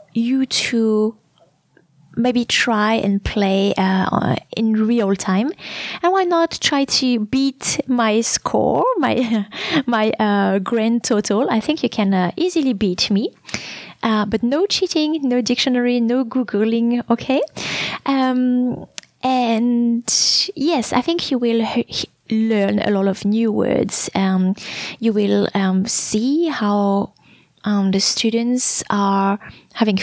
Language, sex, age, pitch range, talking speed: English, female, 20-39, 205-255 Hz, 130 wpm